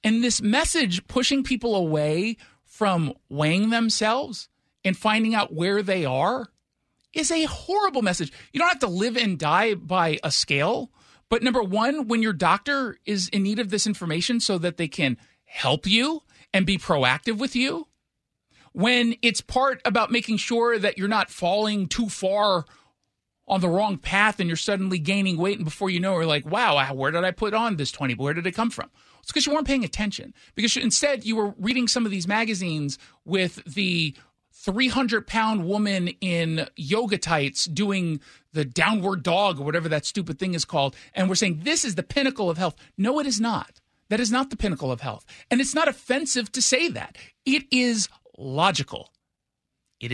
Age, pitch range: 40-59, 170-235 Hz